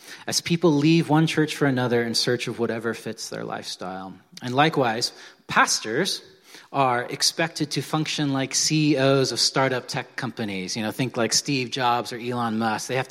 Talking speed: 175 wpm